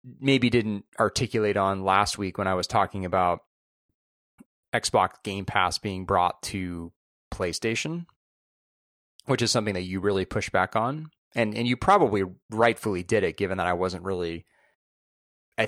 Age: 30-49